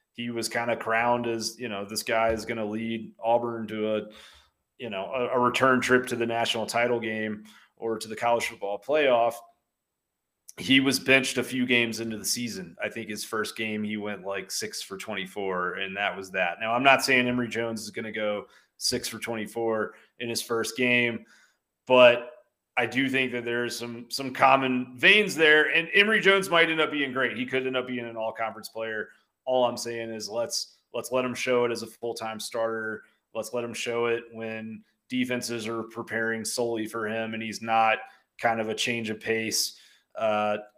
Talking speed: 200 wpm